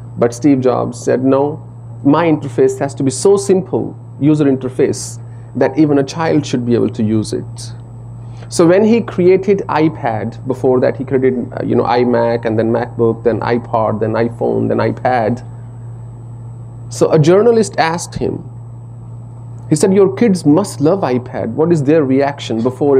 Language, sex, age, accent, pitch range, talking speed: English, male, 30-49, Indian, 115-145 Hz, 160 wpm